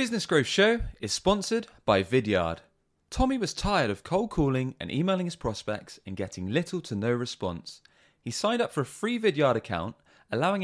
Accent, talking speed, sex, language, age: British, 185 wpm, male, English, 20-39